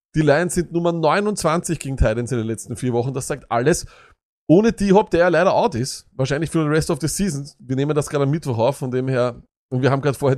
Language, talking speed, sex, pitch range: German, 255 wpm, male, 130-175 Hz